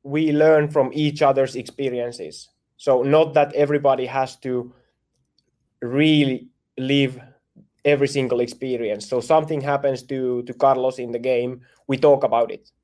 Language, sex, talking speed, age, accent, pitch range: English, male, 140 wpm, 20-39, Finnish, 125-145 Hz